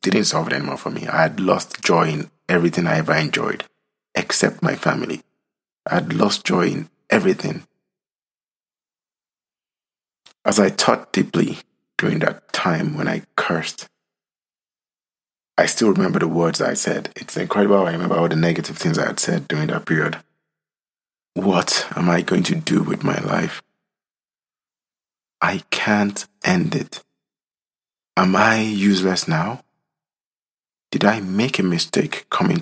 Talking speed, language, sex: 145 wpm, English, male